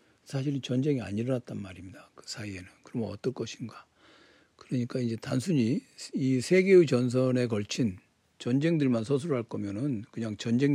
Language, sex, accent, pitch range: Korean, male, native, 110-140 Hz